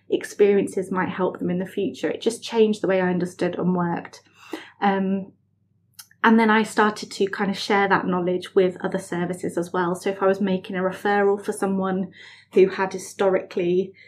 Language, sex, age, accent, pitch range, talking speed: English, female, 20-39, British, 180-205 Hz, 190 wpm